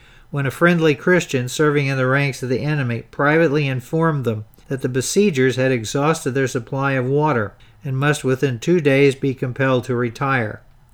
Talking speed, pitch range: 175 wpm, 130-155 Hz